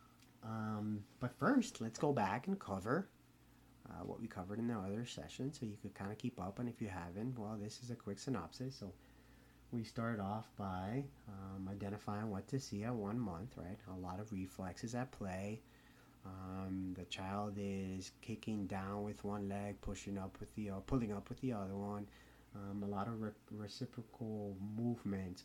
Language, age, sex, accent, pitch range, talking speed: English, 30-49, male, American, 100-125 Hz, 190 wpm